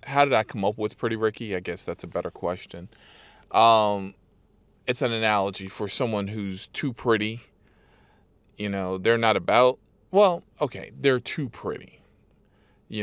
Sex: male